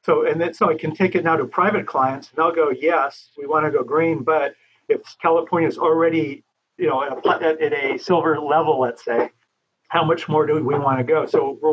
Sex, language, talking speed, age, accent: male, English, 225 wpm, 50-69, American